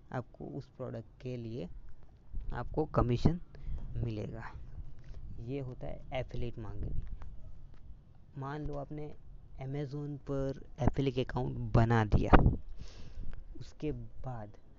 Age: 20-39